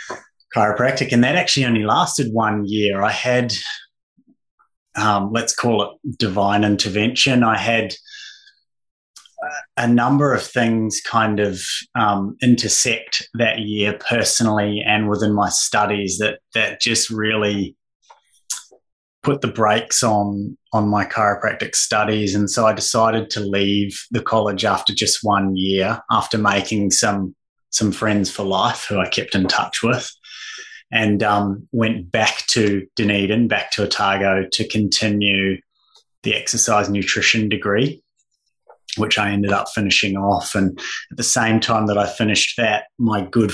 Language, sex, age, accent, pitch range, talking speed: English, male, 20-39, Australian, 100-115 Hz, 140 wpm